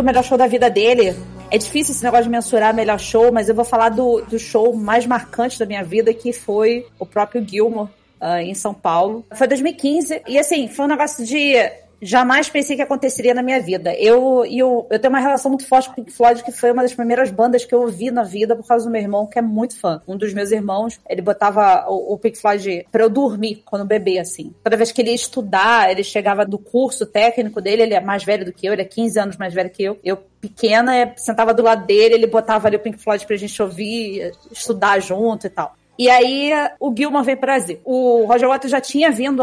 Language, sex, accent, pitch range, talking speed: Portuguese, female, Brazilian, 215-255 Hz, 240 wpm